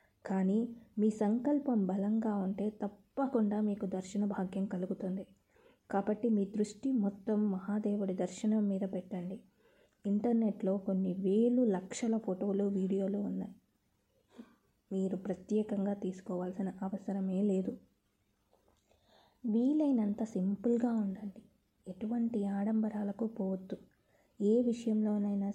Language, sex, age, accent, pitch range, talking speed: Telugu, female, 20-39, native, 190-215 Hz, 90 wpm